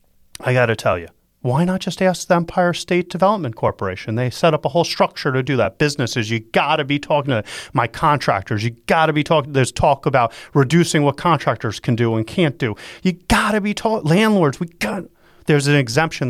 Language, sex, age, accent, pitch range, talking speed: English, male, 30-49, American, 115-165 Hz, 215 wpm